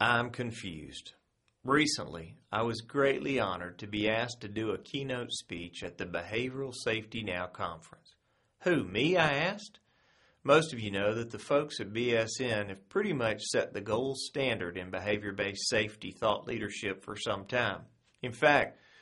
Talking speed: 160 wpm